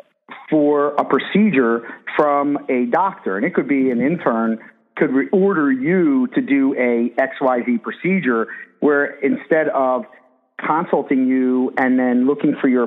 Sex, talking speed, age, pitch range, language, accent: male, 140 wpm, 50-69, 120-145 Hz, English, American